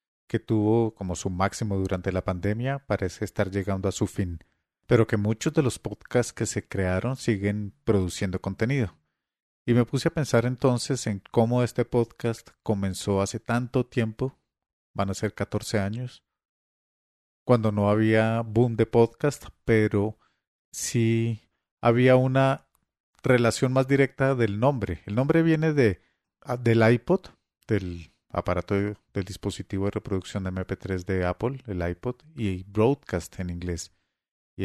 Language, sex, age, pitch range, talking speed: English, male, 40-59, 95-120 Hz, 145 wpm